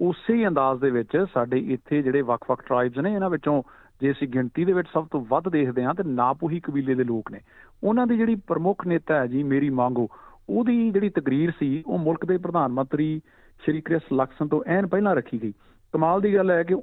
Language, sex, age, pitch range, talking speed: Punjabi, male, 50-69, 130-170 Hz, 210 wpm